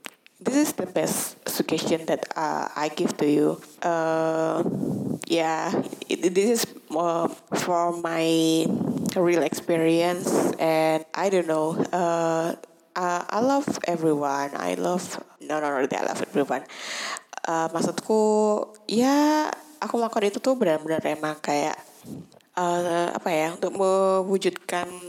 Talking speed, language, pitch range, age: 140 wpm, Indonesian, 155-190 Hz, 20-39